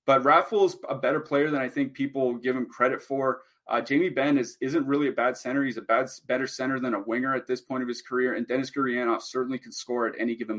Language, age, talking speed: English, 30-49, 260 wpm